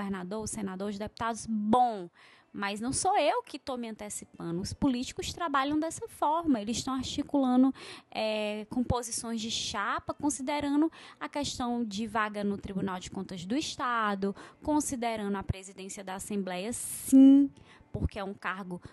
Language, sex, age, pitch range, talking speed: Portuguese, female, 20-39, 205-275 Hz, 150 wpm